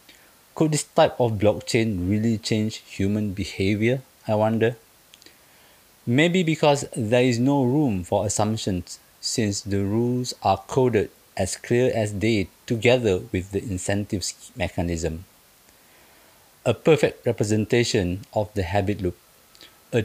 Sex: male